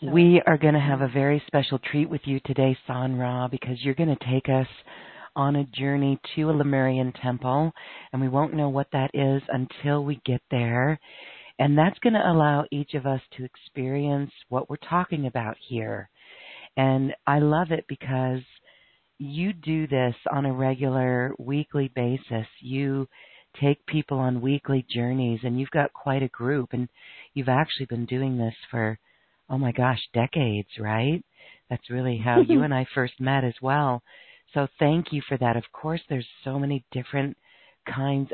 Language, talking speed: English, 175 wpm